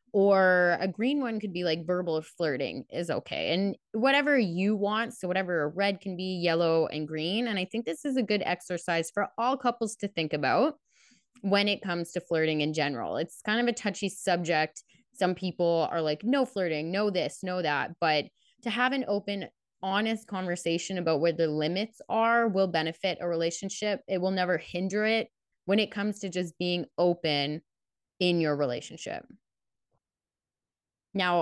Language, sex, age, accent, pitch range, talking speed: English, female, 20-39, American, 160-210 Hz, 175 wpm